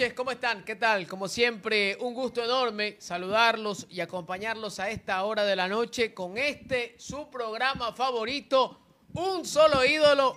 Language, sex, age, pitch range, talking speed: Spanish, male, 30-49, 210-255 Hz, 150 wpm